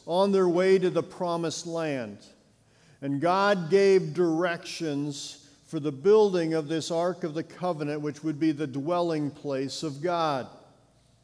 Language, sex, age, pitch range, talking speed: English, male, 50-69, 155-190 Hz, 150 wpm